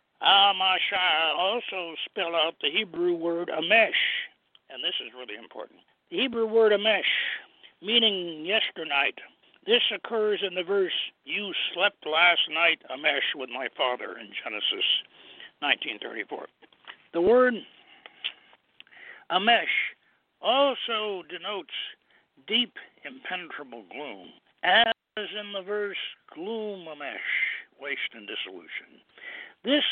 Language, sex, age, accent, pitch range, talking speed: English, male, 60-79, American, 170-225 Hz, 105 wpm